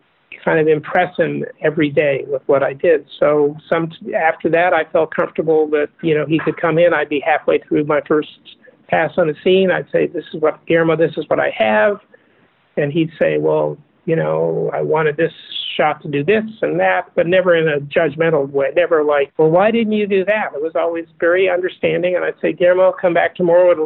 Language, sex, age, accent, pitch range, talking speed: English, male, 50-69, American, 160-200 Hz, 220 wpm